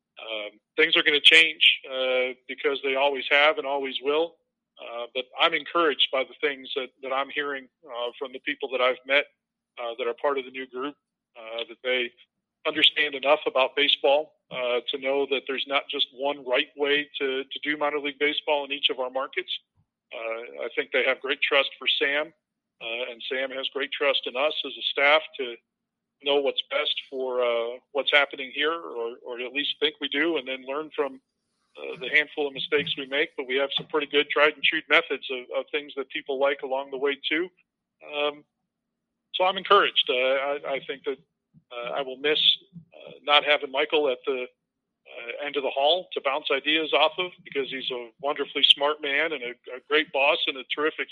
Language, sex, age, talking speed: English, male, 40-59, 210 wpm